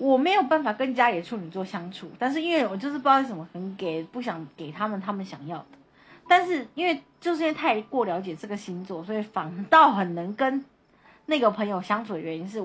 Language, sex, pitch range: Chinese, female, 180-275 Hz